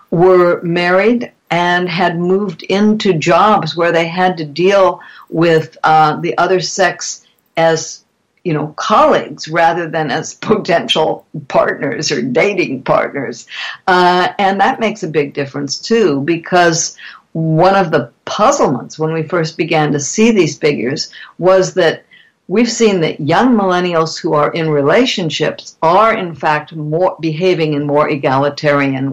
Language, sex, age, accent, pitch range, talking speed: English, female, 60-79, American, 145-180 Hz, 140 wpm